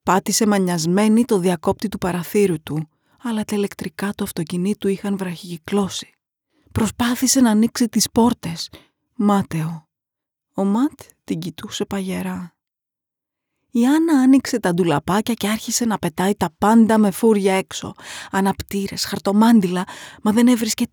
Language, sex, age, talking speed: Greek, female, 30-49, 125 wpm